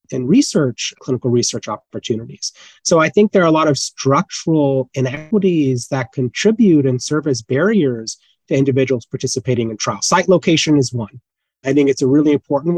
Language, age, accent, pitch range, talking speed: English, 30-49, American, 130-165 Hz, 170 wpm